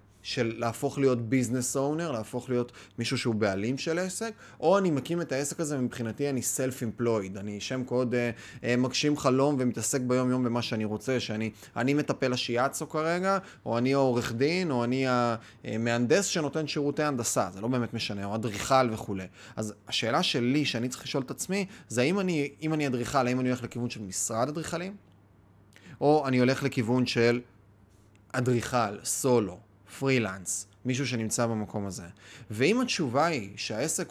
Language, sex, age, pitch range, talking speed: Hebrew, male, 20-39, 110-140 Hz, 155 wpm